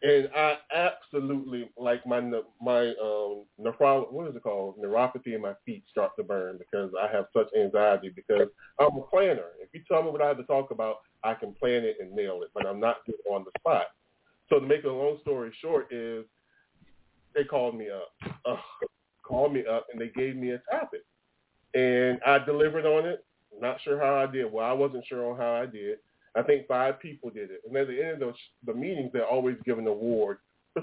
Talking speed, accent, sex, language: 220 wpm, American, male, English